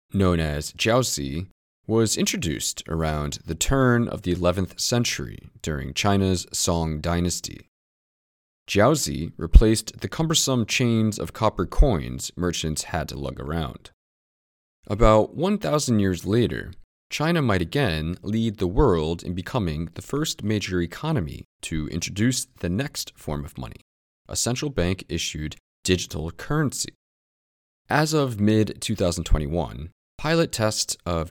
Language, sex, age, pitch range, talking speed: English, male, 30-49, 80-110 Hz, 120 wpm